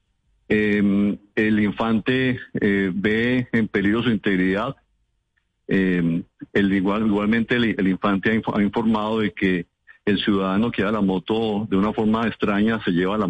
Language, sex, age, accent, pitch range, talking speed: Spanish, male, 50-69, Colombian, 95-110 Hz, 140 wpm